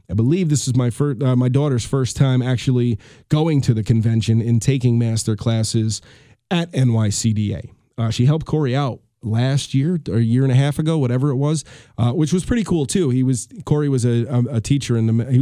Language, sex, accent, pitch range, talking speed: English, male, American, 120-150 Hz, 210 wpm